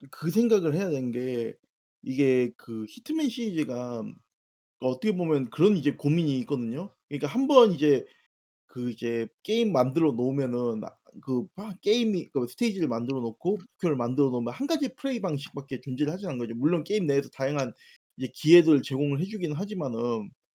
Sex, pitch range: male, 135-220 Hz